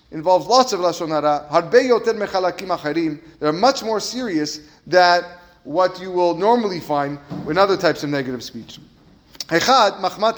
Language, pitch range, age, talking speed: English, 175-240 Hz, 30-49, 150 wpm